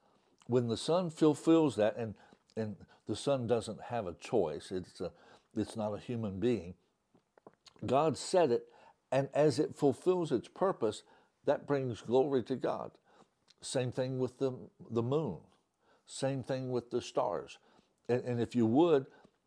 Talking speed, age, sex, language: 155 wpm, 60-79, male, English